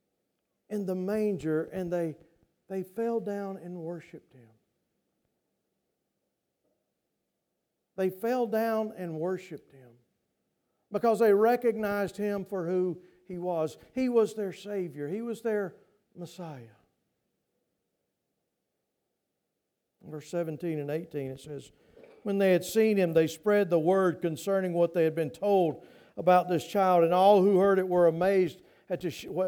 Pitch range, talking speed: 175-215 Hz, 140 wpm